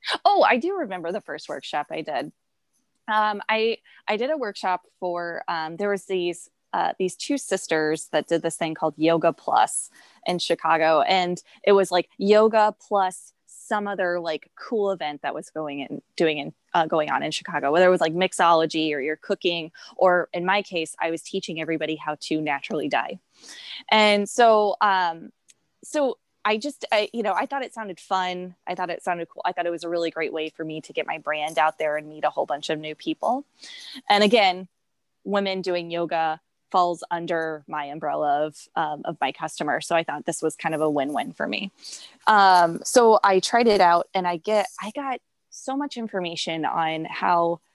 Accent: American